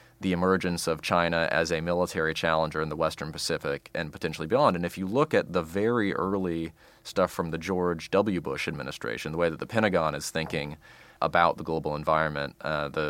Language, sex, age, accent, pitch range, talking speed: English, male, 30-49, American, 80-95 Hz, 195 wpm